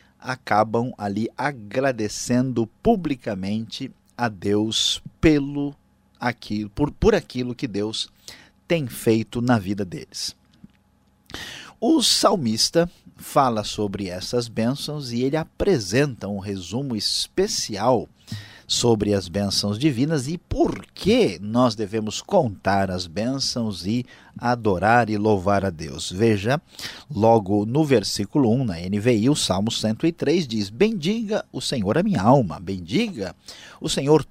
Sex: male